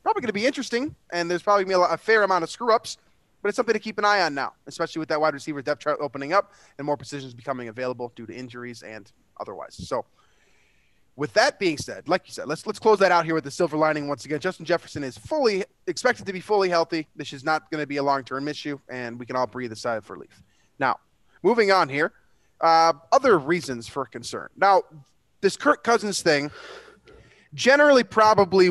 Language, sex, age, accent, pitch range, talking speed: English, male, 20-39, American, 135-180 Hz, 225 wpm